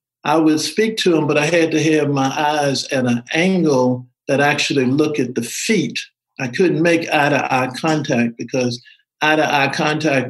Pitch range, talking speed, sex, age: 130-160 Hz, 170 wpm, male, 50-69